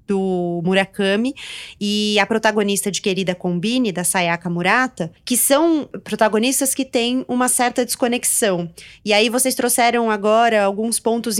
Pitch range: 195-235 Hz